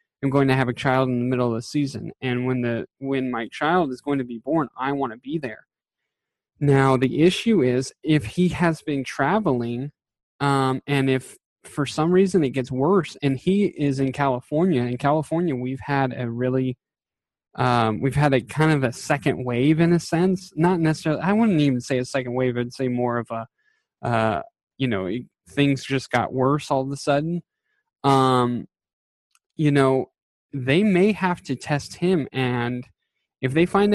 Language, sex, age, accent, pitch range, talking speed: English, male, 20-39, American, 125-160 Hz, 190 wpm